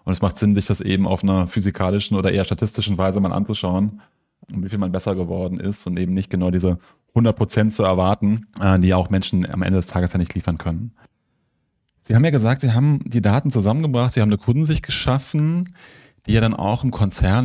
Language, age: German, 30-49